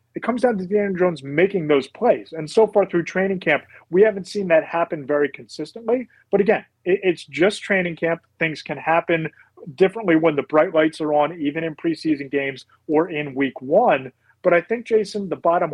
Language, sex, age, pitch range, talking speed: English, male, 30-49, 145-185 Hz, 200 wpm